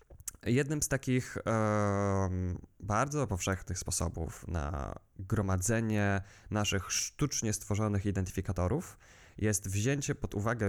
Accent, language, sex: native, Polish, male